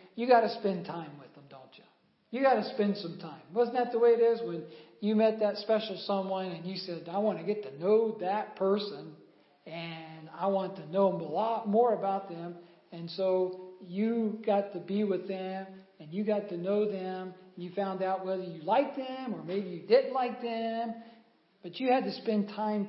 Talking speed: 210 wpm